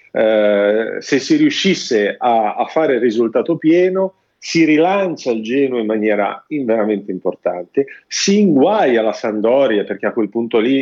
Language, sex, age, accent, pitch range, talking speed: Italian, male, 40-59, native, 130-185 Hz, 150 wpm